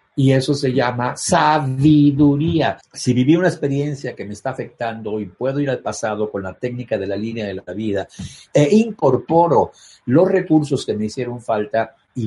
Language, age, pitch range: Spanish, 50-69, 100-130 Hz